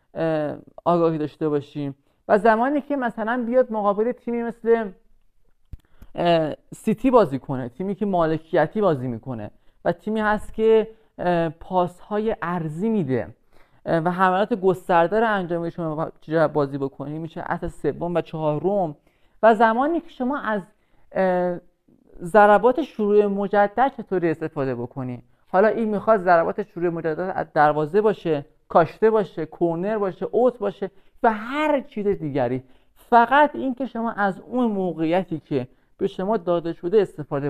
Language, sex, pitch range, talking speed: Persian, male, 155-220 Hz, 130 wpm